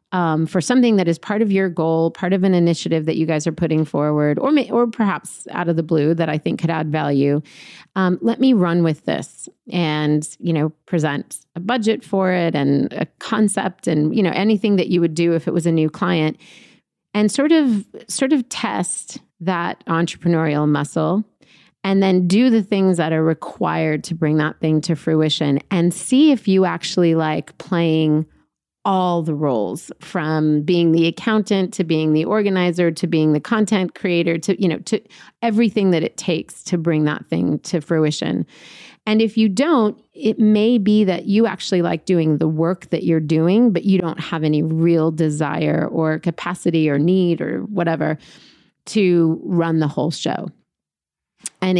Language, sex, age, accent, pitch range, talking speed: English, female, 30-49, American, 160-195 Hz, 185 wpm